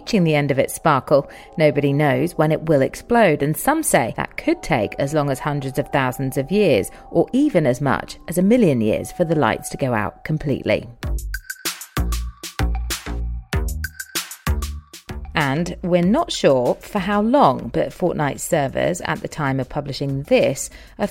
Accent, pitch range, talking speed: British, 135-195 Hz, 165 wpm